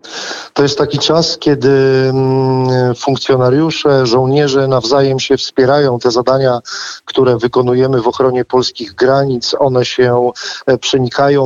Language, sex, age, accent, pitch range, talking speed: Polish, male, 40-59, native, 125-140 Hz, 110 wpm